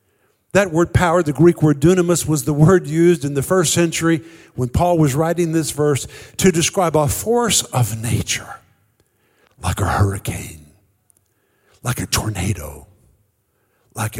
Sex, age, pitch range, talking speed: male, 50-69, 135-185 Hz, 145 wpm